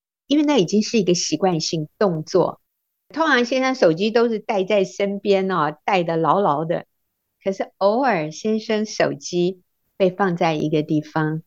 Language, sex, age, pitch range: Chinese, female, 50-69, 155-210 Hz